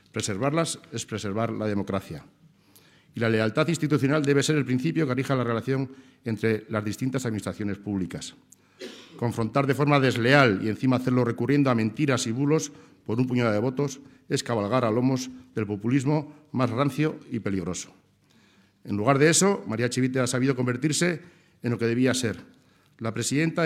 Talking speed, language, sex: 165 wpm, Spanish, male